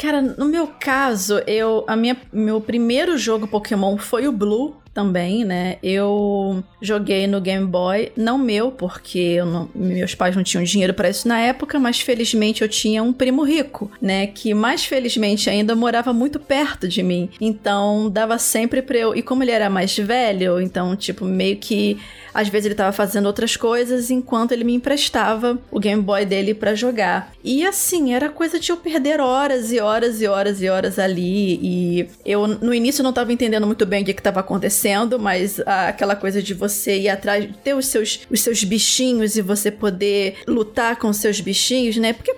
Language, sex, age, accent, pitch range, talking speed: Portuguese, female, 20-39, Brazilian, 205-255 Hz, 195 wpm